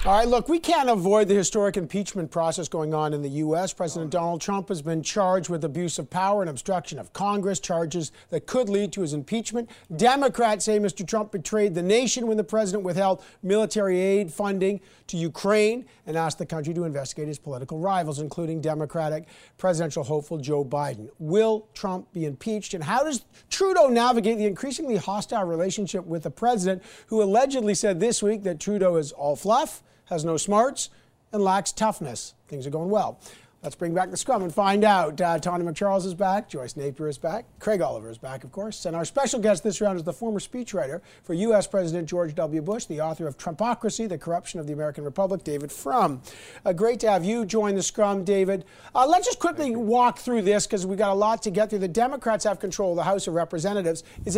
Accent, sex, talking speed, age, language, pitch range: American, male, 205 wpm, 50-69, English, 165-215 Hz